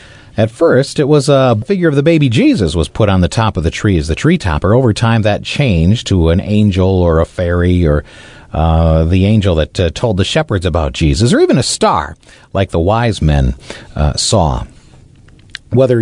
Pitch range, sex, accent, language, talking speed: 90-140 Hz, male, American, English, 200 wpm